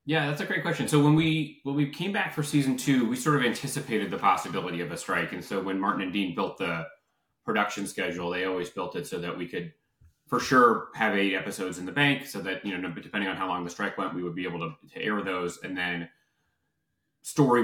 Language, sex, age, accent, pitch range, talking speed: English, male, 30-49, American, 90-120 Hz, 245 wpm